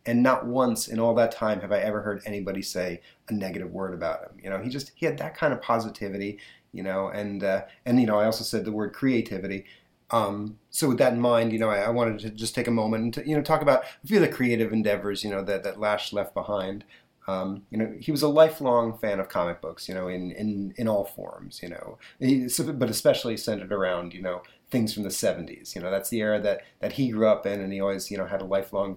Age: 30-49